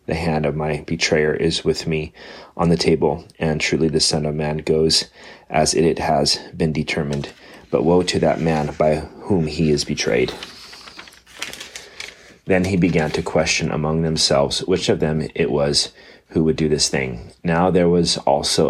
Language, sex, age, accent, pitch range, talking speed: English, male, 30-49, American, 75-80 Hz, 175 wpm